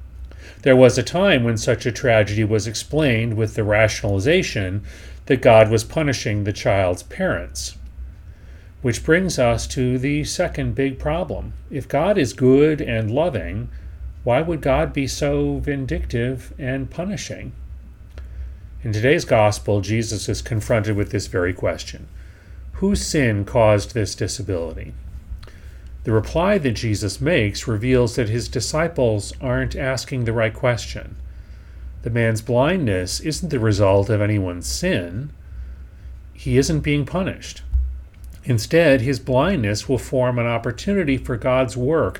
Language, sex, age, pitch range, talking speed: English, male, 40-59, 90-130 Hz, 135 wpm